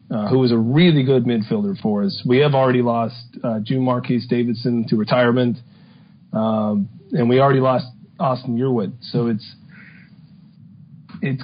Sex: male